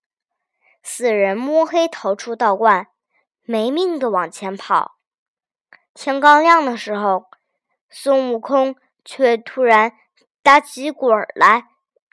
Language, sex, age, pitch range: Chinese, male, 20-39, 230-315 Hz